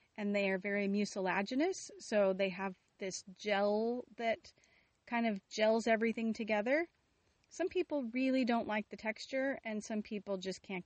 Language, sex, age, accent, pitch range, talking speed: English, female, 30-49, American, 195-250 Hz, 155 wpm